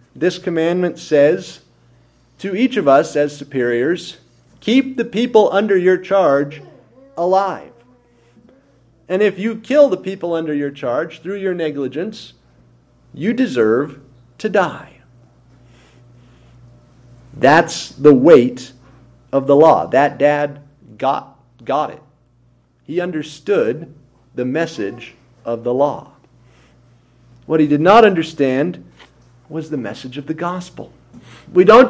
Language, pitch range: English, 120-185 Hz